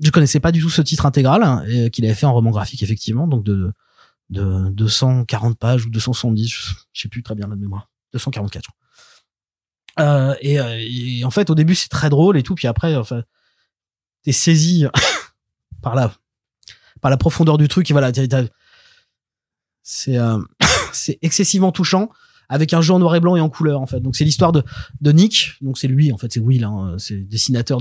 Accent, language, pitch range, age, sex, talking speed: French, French, 120-160 Hz, 20-39, male, 210 wpm